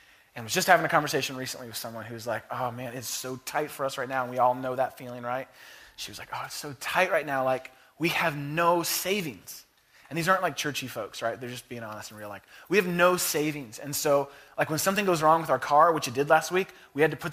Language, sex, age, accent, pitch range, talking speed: English, male, 20-39, American, 135-185 Hz, 275 wpm